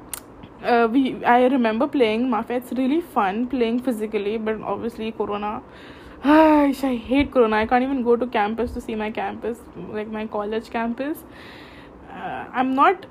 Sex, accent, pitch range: female, Indian, 220-250 Hz